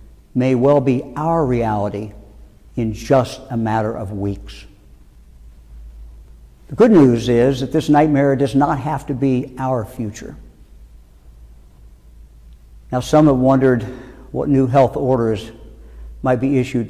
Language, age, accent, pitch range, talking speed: English, 60-79, American, 100-135 Hz, 130 wpm